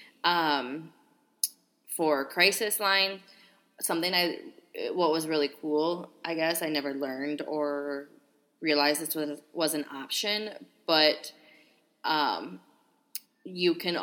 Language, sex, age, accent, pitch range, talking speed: English, female, 20-39, American, 145-200 Hz, 110 wpm